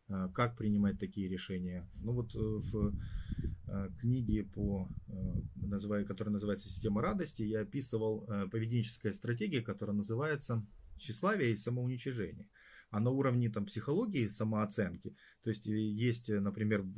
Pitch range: 100-120 Hz